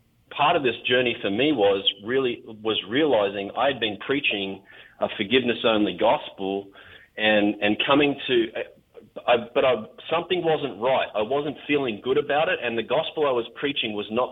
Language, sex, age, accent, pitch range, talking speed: English, male, 30-49, Australian, 110-140 Hz, 165 wpm